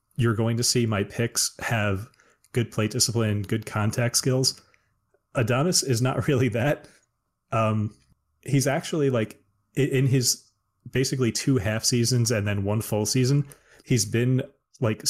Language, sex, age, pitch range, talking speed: English, male, 30-49, 105-130 Hz, 145 wpm